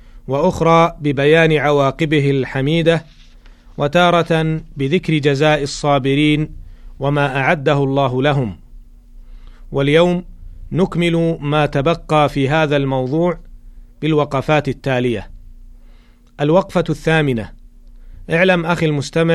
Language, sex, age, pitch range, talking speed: Arabic, male, 40-59, 130-160 Hz, 80 wpm